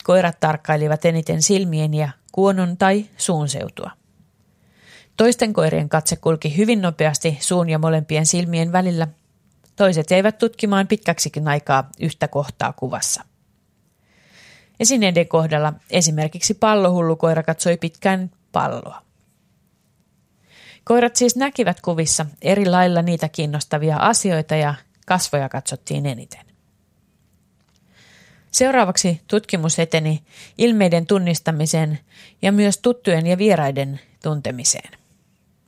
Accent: native